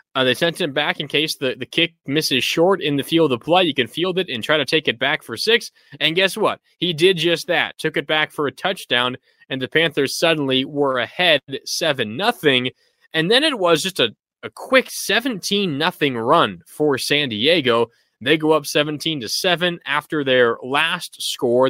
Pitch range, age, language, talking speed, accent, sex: 140-185 Hz, 20-39, English, 205 wpm, American, male